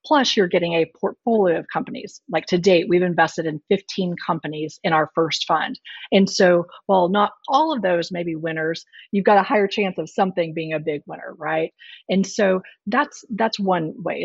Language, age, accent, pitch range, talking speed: English, 40-59, American, 165-205 Hz, 200 wpm